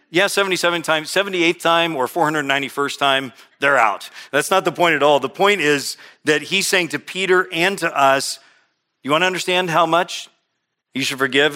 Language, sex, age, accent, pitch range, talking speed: English, male, 40-59, American, 105-150 Hz, 185 wpm